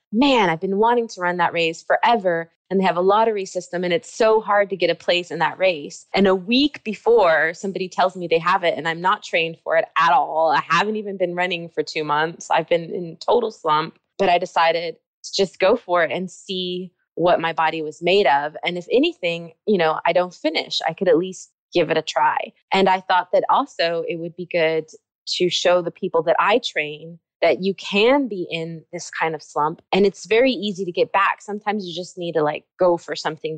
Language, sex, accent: English, female, American